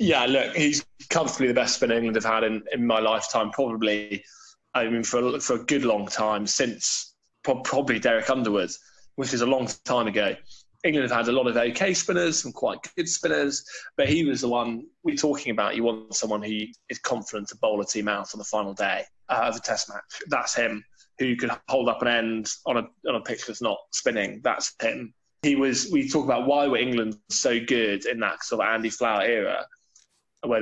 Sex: male